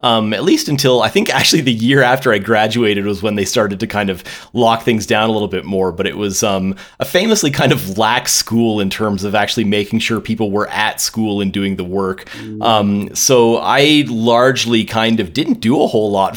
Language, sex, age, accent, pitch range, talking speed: English, male, 30-49, American, 100-120 Hz, 225 wpm